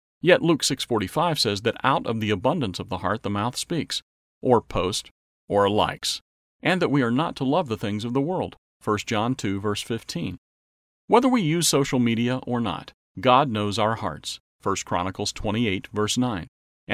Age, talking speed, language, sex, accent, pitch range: 40-59, 170 wpm, English, male, American, 100-135 Hz